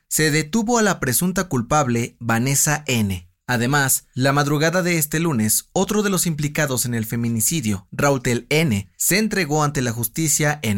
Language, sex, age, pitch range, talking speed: Spanish, male, 30-49, 120-170 Hz, 160 wpm